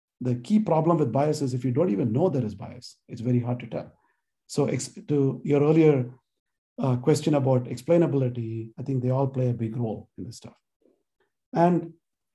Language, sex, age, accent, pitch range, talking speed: English, male, 50-69, Indian, 115-145 Hz, 190 wpm